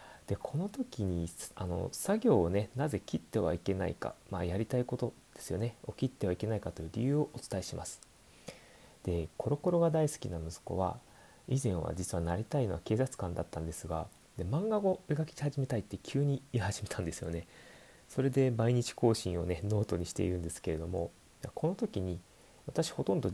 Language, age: Japanese, 30-49